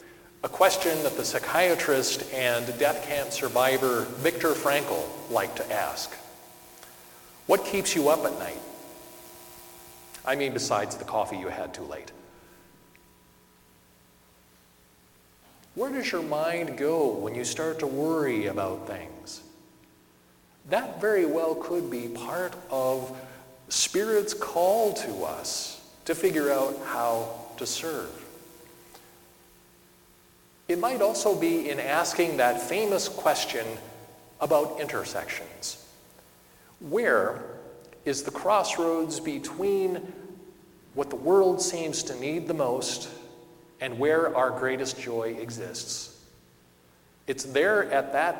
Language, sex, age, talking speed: English, male, 40-59, 115 wpm